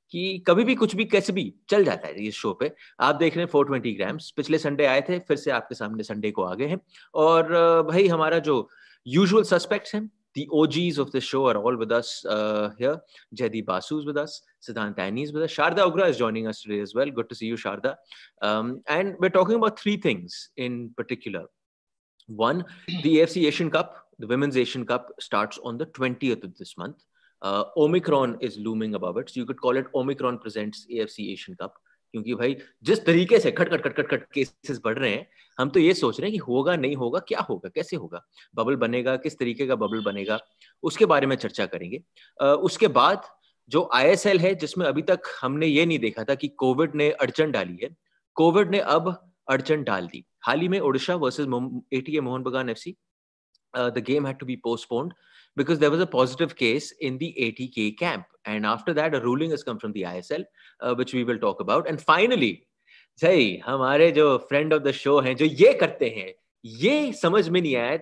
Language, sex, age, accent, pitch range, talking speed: English, male, 30-49, Indian, 120-175 Hz, 185 wpm